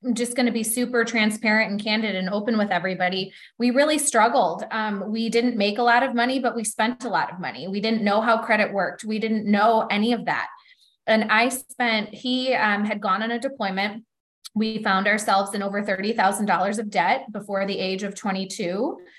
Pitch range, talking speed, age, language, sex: 195-240 Hz, 205 wpm, 20-39, English, female